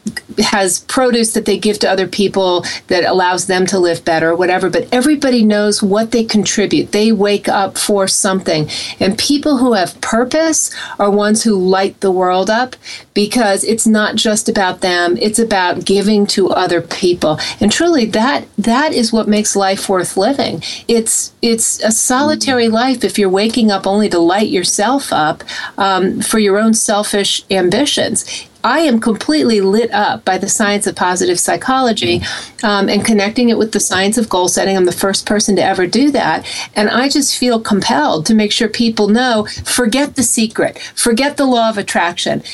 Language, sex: English, female